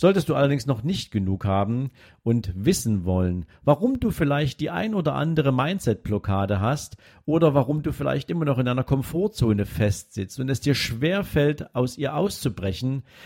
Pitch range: 105-140 Hz